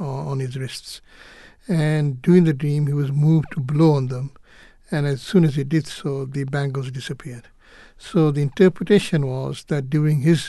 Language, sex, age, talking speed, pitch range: English, male, 60-79, 175 wpm, 140-165 Hz